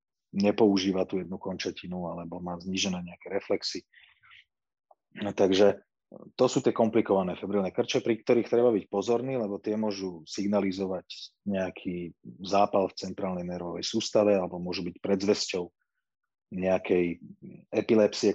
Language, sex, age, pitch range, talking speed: Slovak, male, 30-49, 90-105 Hz, 120 wpm